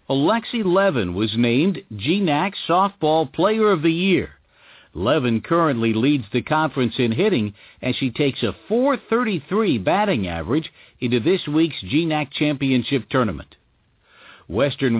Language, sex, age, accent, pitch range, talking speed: English, male, 60-79, American, 125-180 Hz, 125 wpm